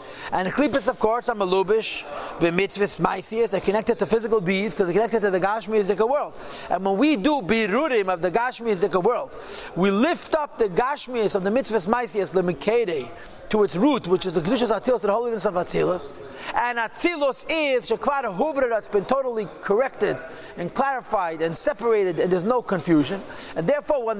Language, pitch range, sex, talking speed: English, 195-255 Hz, male, 185 wpm